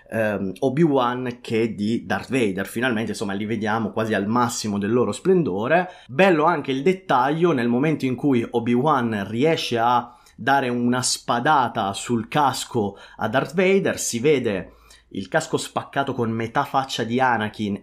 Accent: native